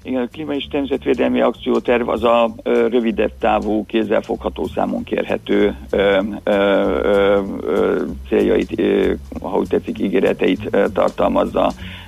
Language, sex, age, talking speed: Hungarian, male, 50-69, 115 wpm